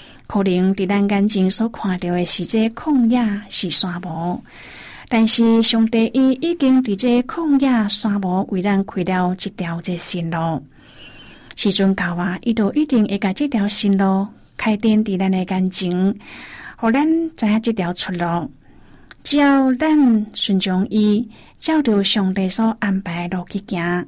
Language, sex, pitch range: Chinese, female, 185-230 Hz